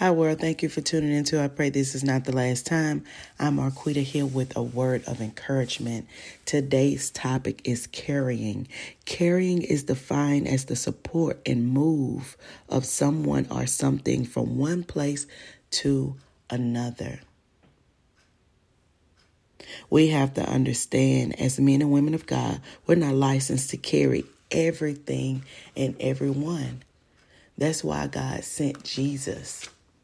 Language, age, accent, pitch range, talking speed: English, 40-59, American, 120-145 Hz, 135 wpm